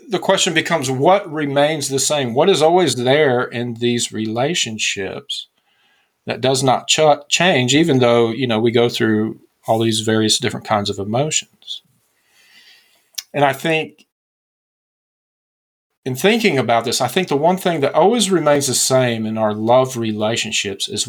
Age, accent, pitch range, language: 40-59, American, 115-155 Hz, English